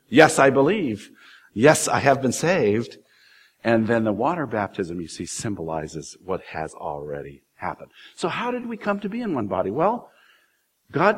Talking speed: 170 wpm